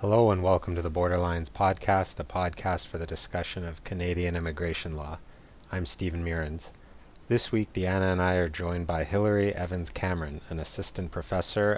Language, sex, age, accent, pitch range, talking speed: English, male, 30-49, American, 85-100 Hz, 170 wpm